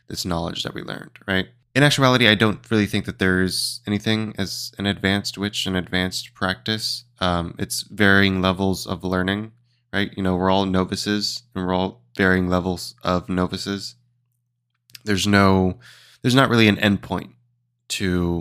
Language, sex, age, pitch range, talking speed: English, male, 20-39, 90-115 Hz, 165 wpm